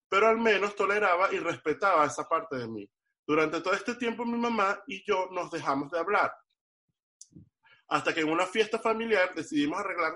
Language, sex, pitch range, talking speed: Spanish, male, 170-230 Hz, 175 wpm